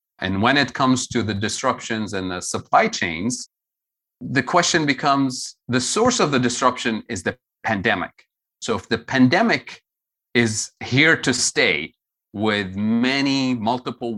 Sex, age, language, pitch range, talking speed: male, 30-49, English, 100-125 Hz, 140 wpm